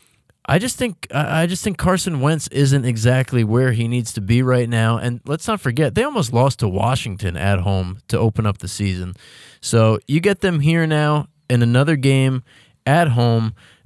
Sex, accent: male, American